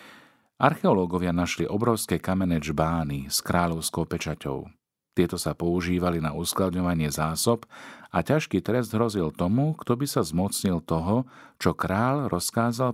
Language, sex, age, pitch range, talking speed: Slovak, male, 50-69, 80-105 Hz, 125 wpm